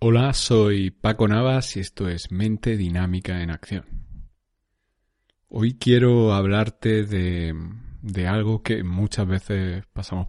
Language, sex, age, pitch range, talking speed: Spanish, male, 30-49, 90-110 Hz, 120 wpm